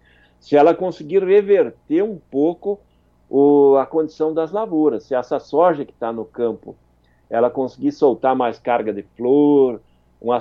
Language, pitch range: Portuguese, 115-155 Hz